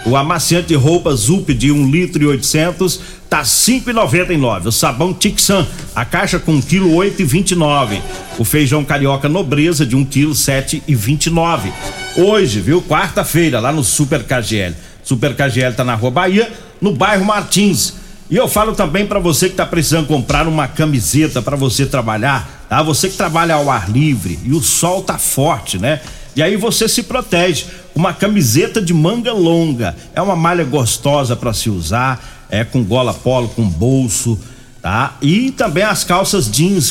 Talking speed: 165 wpm